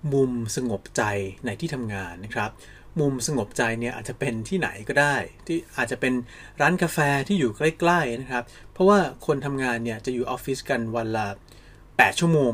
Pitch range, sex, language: 115-155 Hz, male, Thai